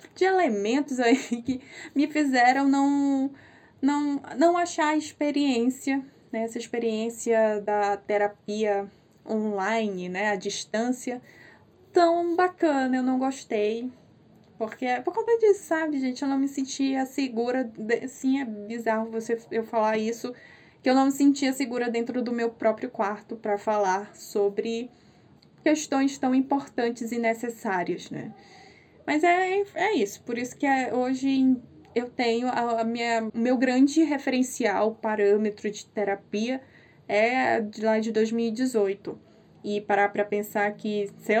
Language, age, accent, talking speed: Portuguese, 10-29, Brazilian, 130 wpm